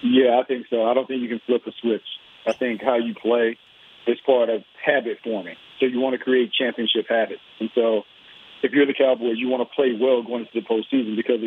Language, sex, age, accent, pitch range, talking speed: English, male, 40-59, American, 120-145 Hz, 235 wpm